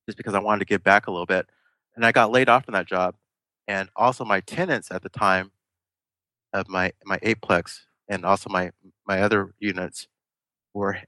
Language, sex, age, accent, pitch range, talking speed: English, male, 30-49, American, 95-120 Hz, 195 wpm